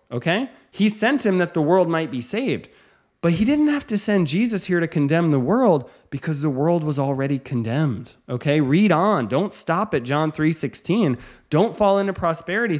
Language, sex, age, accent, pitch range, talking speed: English, male, 20-39, American, 135-190 Hz, 190 wpm